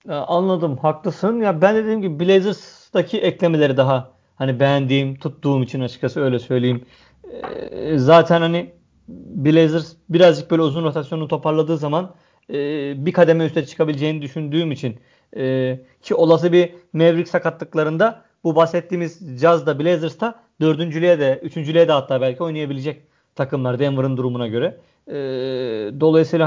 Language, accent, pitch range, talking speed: Turkish, native, 140-170 Hz, 135 wpm